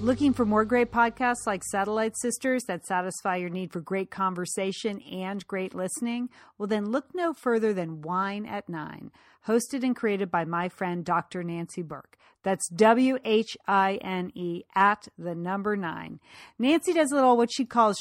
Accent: American